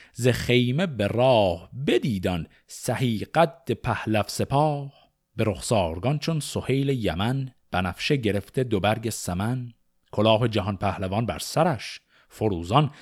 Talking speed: 110 wpm